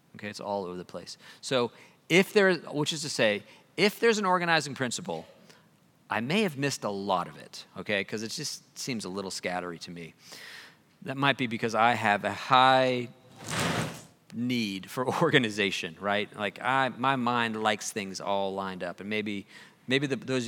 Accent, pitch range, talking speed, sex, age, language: American, 105-140 Hz, 180 wpm, male, 40-59, English